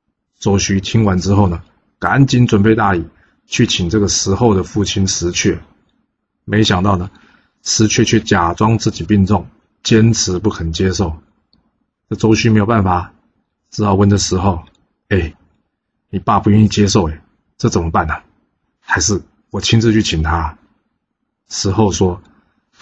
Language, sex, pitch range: Chinese, male, 90-110 Hz